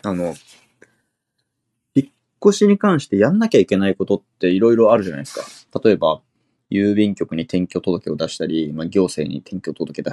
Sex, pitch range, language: male, 95-125 Hz, Japanese